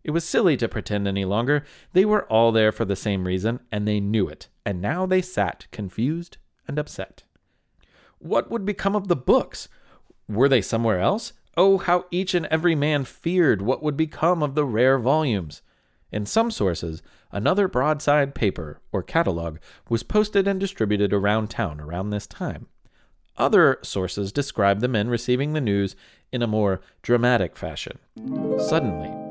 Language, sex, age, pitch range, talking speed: English, male, 30-49, 95-145 Hz, 165 wpm